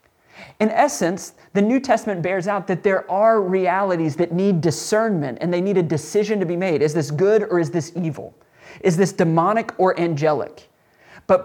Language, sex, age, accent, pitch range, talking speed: English, male, 30-49, American, 160-205 Hz, 185 wpm